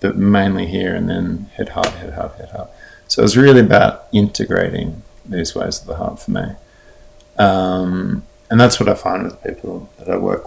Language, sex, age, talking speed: Swedish, male, 50-69, 200 wpm